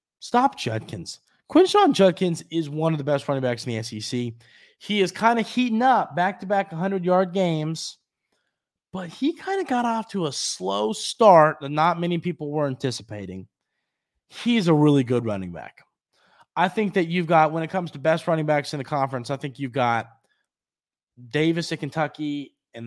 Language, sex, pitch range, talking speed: English, male, 120-190 Hz, 180 wpm